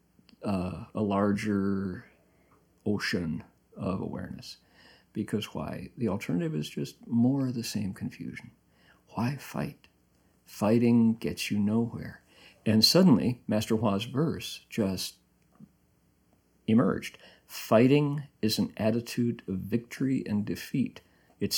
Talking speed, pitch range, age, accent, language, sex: 110 wpm, 100-120 Hz, 50-69, American, English, male